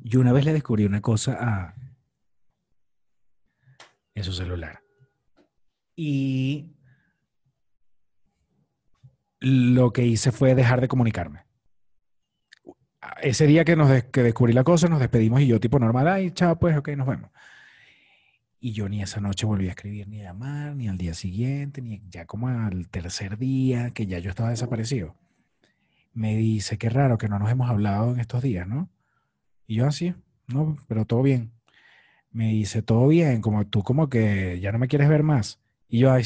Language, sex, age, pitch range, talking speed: Spanish, male, 30-49, 105-135 Hz, 170 wpm